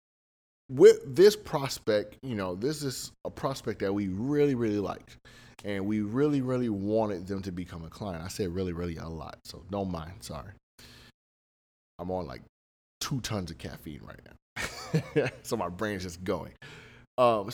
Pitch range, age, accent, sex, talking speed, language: 90-125 Hz, 30-49, American, male, 170 wpm, English